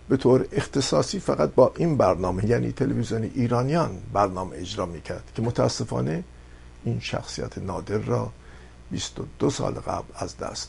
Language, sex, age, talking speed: Persian, male, 50-69, 135 wpm